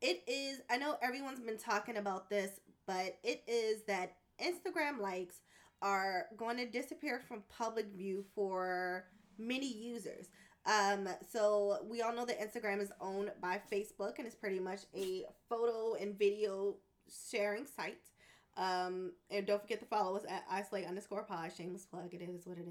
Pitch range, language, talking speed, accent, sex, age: 185-225 Hz, English, 165 wpm, American, female, 20-39